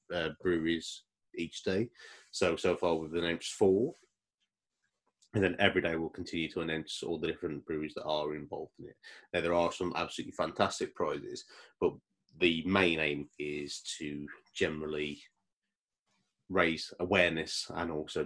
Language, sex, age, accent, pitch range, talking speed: English, male, 30-49, British, 80-95 Hz, 150 wpm